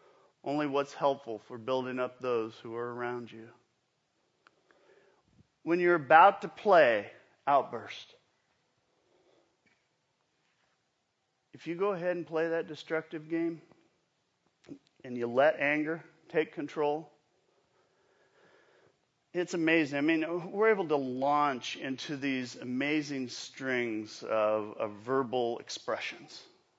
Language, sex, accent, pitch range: English, male, American, 130-180 Hz